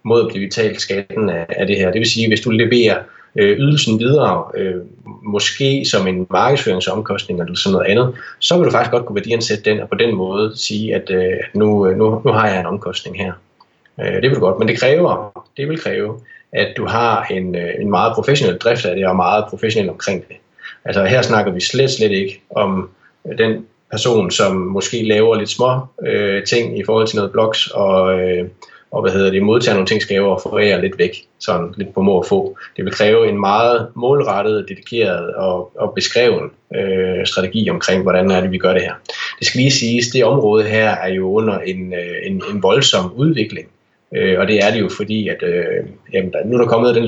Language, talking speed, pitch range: Danish, 215 wpm, 95-120 Hz